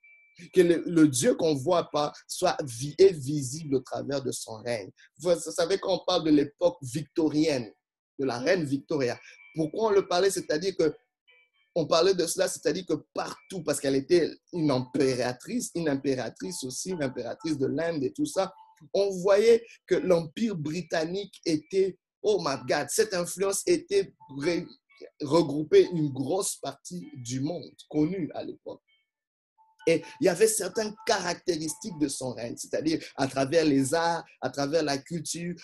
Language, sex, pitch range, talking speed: French, male, 145-205 Hz, 155 wpm